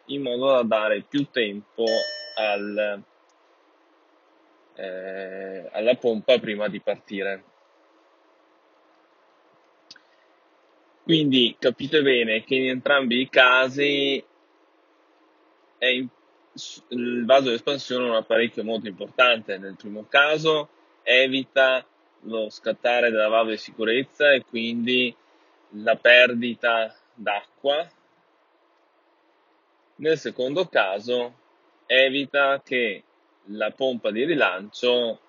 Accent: native